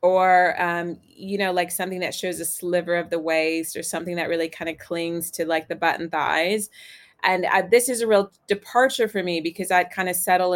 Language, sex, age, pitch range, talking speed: English, female, 20-39, 170-200 Hz, 215 wpm